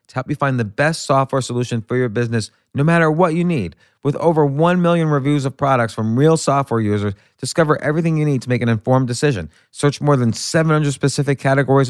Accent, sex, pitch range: American, male, 115-145 Hz